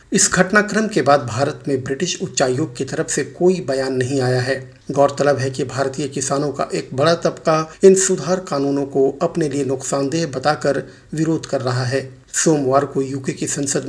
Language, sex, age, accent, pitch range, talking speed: Hindi, male, 50-69, native, 135-165 Hz, 180 wpm